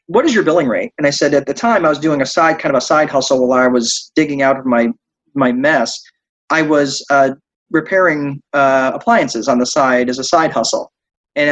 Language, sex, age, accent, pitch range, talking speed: English, male, 30-49, American, 130-155 Hz, 230 wpm